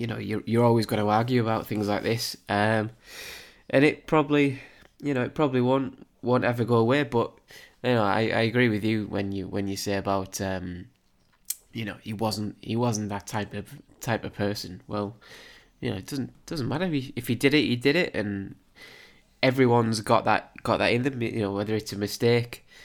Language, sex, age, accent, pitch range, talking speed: English, male, 20-39, British, 100-115 Hz, 215 wpm